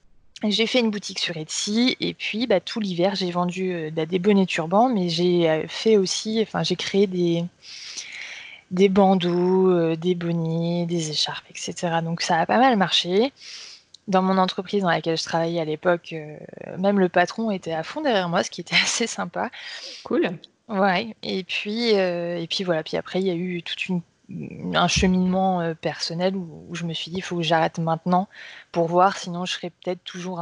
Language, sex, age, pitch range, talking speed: French, female, 20-39, 170-205 Hz, 190 wpm